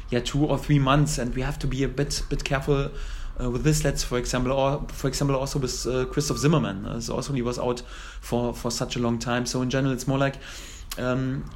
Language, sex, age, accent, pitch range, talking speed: English, male, 30-49, German, 120-140 Hz, 250 wpm